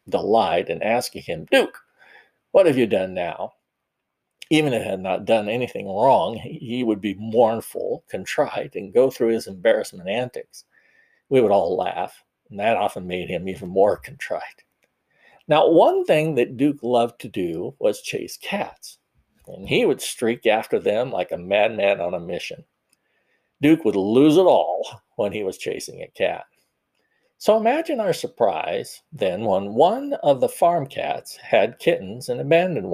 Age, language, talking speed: 50-69, English, 165 wpm